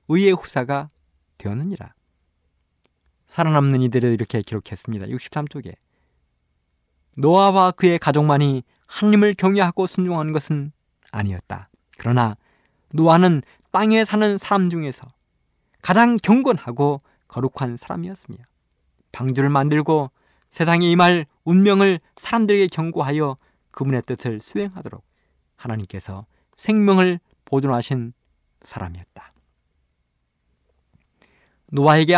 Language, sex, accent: Korean, male, native